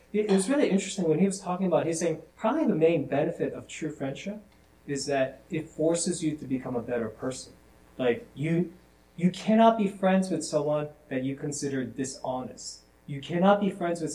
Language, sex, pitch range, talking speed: English, male, 125-160 Hz, 190 wpm